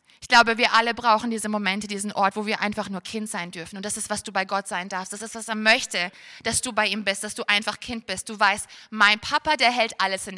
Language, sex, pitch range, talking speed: German, female, 200-250 Hz, 280 wpm